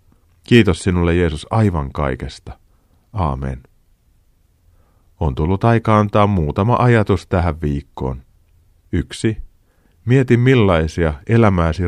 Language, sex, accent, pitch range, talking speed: Finnish, male, native, 80-105 Hz, 90 wpm